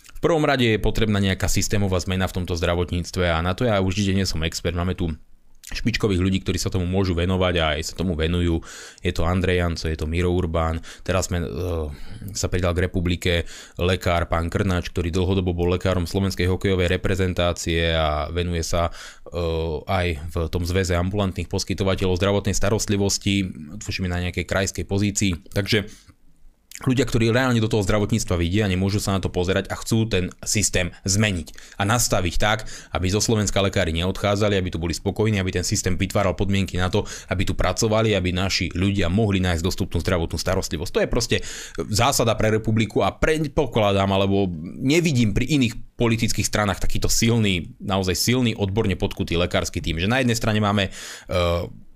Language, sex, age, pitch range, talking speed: Slovak, male, 20-39, 90-105 Hz, 175 wpm